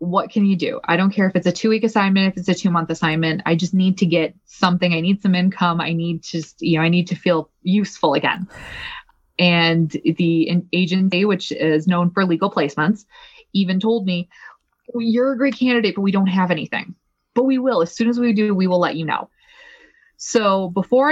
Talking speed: 215 wpm